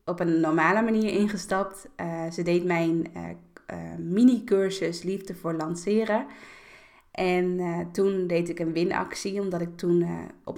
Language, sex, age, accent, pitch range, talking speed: Dutch, female, 20-39, Dutch, 170-195 Hz, 155 wpm